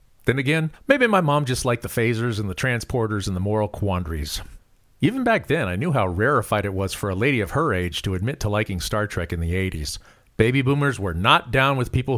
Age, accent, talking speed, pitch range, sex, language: 40-59, American, 230 wpm, 100-135 Hz, male, English